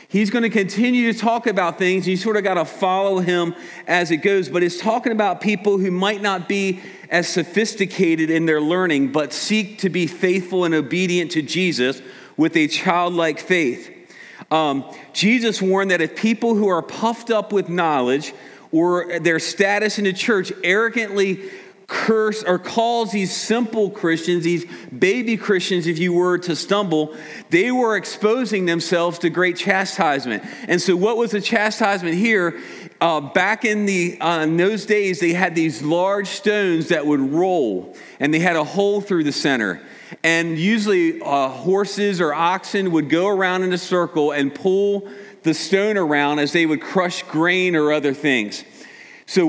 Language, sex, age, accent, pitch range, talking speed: English, male, 40-59, American, 170-210 Hz, 170 wpm